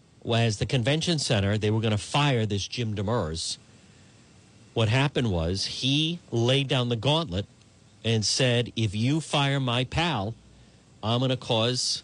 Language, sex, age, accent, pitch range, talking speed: English, male, 50-69, American, 115-155 Hz, 155 wpm